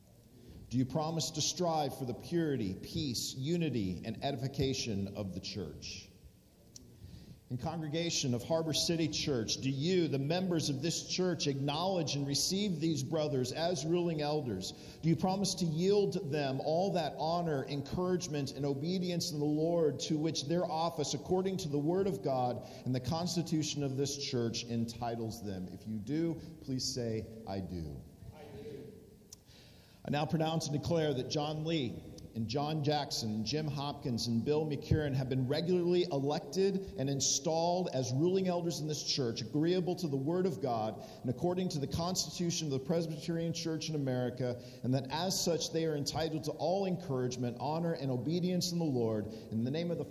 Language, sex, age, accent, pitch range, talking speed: English, male, 50-69, American, 130-165 Hz, 170 wpm